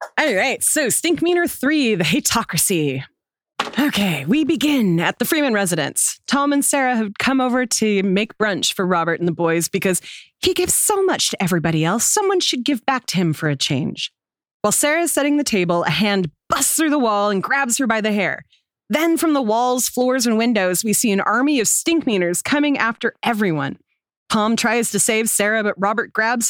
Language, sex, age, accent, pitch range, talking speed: English, female, 30-49, American, 200-290 Hz, 195 wpm